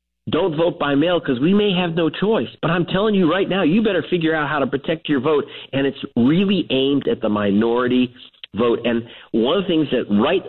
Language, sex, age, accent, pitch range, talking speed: English, male, 50-69, American, 120-170 Hz, 230 wpm